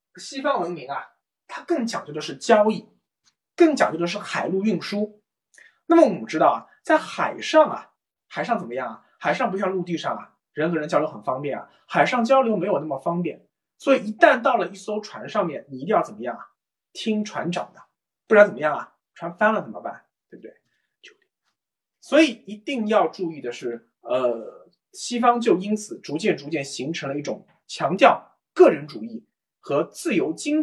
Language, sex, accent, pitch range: Chinese, male, native, 185-270 Hz